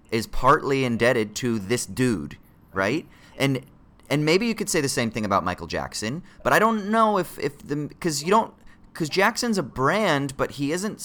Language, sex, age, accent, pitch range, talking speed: English, male, 30-49, American, 110-145 Hz, 205 wpm